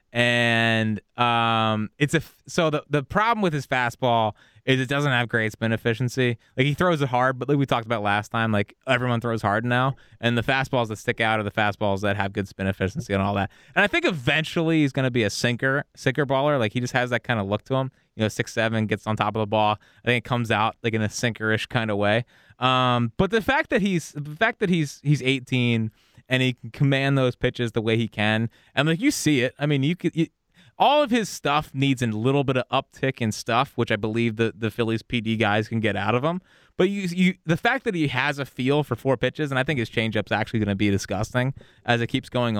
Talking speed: 250 wpm